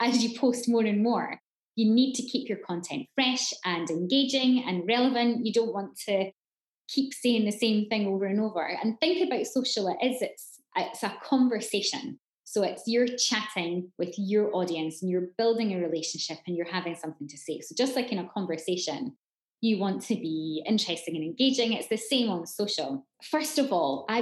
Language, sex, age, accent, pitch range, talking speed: English, female, 20-39, British, 180-235 Hz, 200 wpm